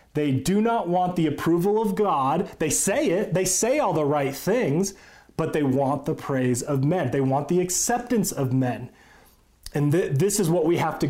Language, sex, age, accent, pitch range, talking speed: English, male, 30-49, American, 135-170 Hz, 200 wpm